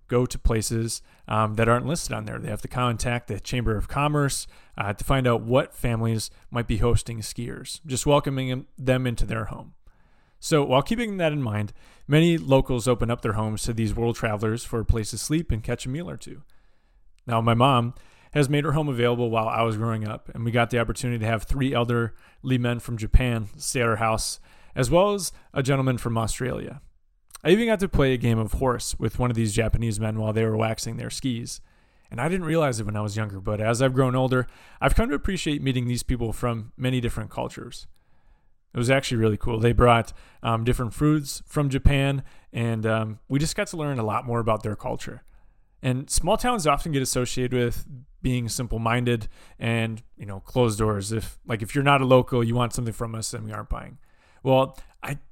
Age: 30-49